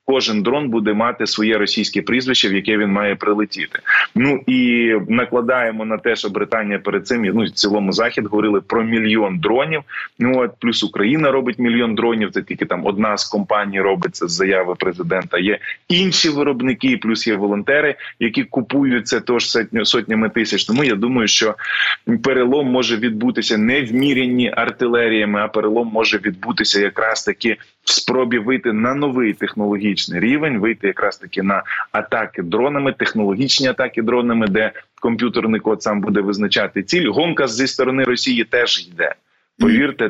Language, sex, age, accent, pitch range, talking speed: Ukrainian, male, 20-39, native, 105-125 Hz, 155 wpm